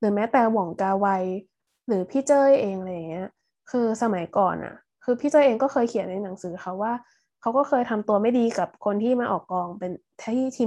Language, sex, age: Thai, female, 20-39